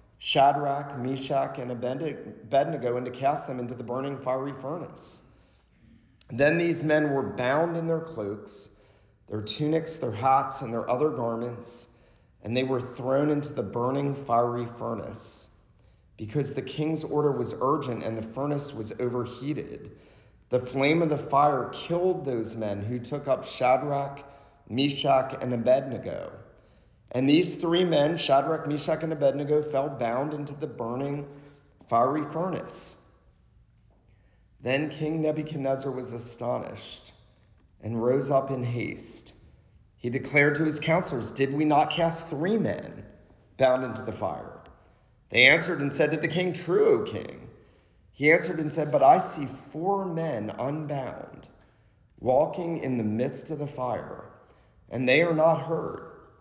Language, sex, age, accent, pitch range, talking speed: English, male, 40-59, American, 115-150 Hz, 145 wpm